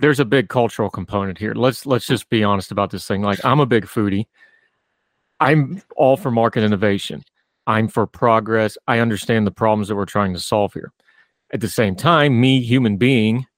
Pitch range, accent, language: 105-125 Hz, American, English